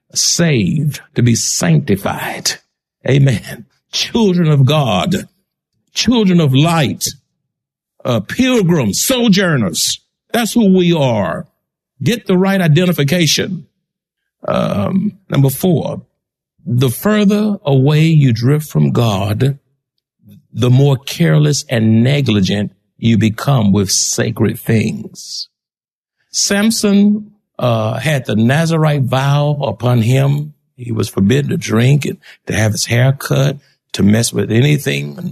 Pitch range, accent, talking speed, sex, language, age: 120-180 Hz, American, 110 wpm, male, English, 60-79